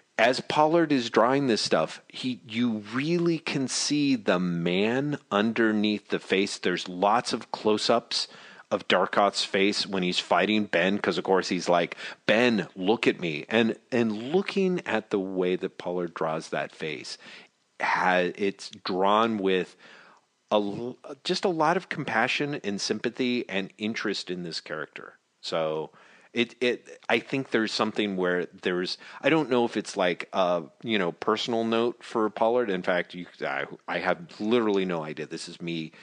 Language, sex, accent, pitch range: English, male, American, 90-120 Hz